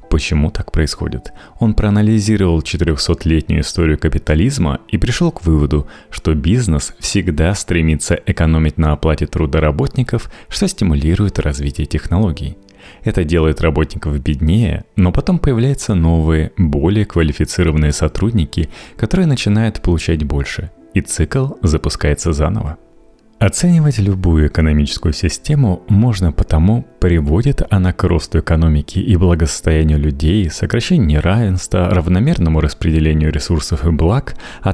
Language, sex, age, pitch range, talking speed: Russian, male, 30-49, 80-105 Hz, 115 wpm